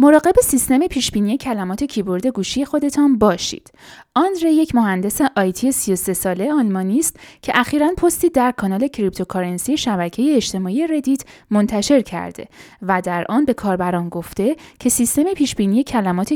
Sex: female